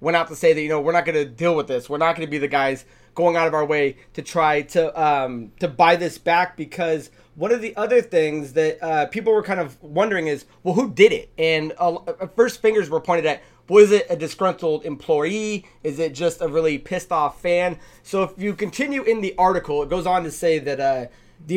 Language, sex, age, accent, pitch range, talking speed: English, male, 20-39, American, 150-190 Hz, 240 wpm